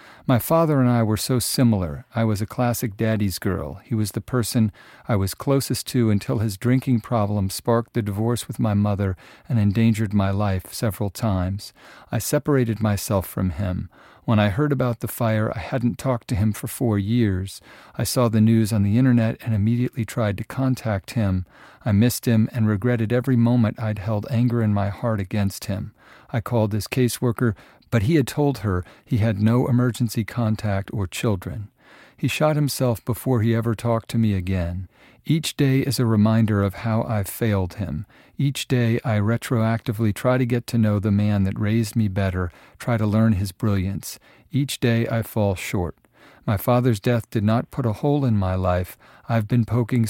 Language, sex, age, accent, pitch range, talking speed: English, male, 50-69, American, 105-125 Hz, 190 wpm